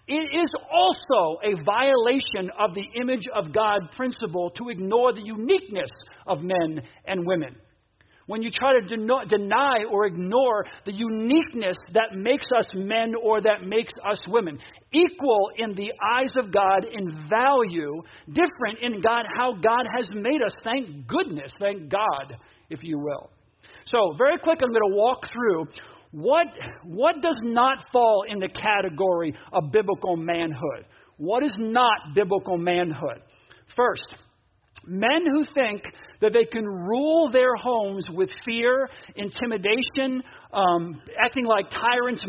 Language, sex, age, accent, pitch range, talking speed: English, male, 50-69, American, 190-255 Hz, 145 wpm